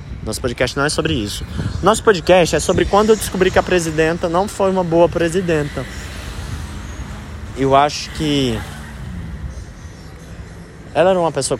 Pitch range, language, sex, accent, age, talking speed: 90-150 Hz, Portuguese, male, Brazilian, 20-39, 145 wpm